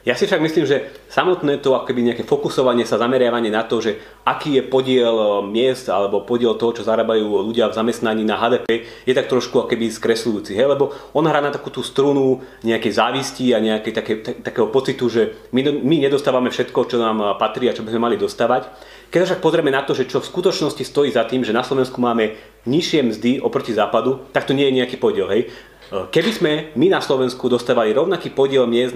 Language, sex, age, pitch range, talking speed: Slovak, male, 30-49, 115-145 Hz, 210 wpm